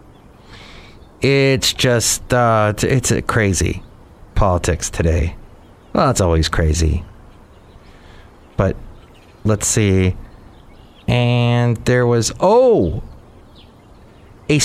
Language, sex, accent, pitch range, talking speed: English, male, American, 110-155 Hz, 80 wpm